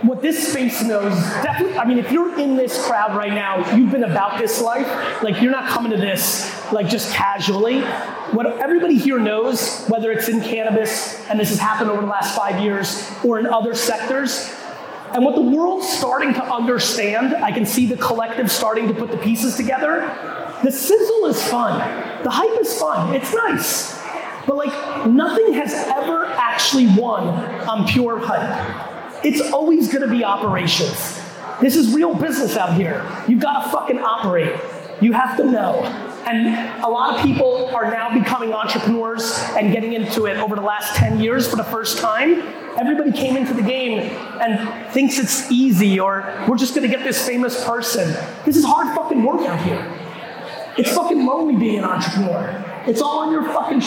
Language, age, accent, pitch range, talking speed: English, 30-49, American, 220-270 Hz, 185 wpm